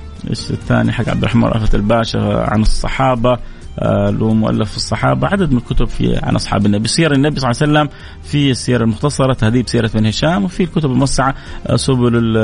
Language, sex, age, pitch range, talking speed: Arabic, male, 30-49, 120-170 Hz, 190 wpm